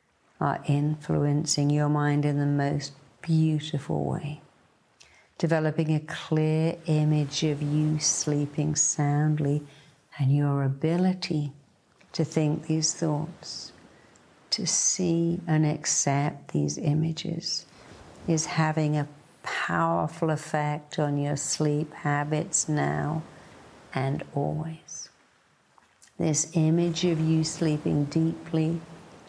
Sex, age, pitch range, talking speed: female, 60-79, 145-165 Hz, 100 wpm